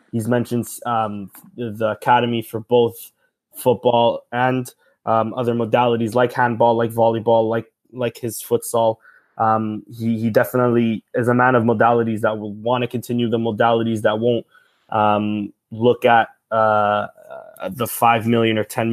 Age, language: 20-39, English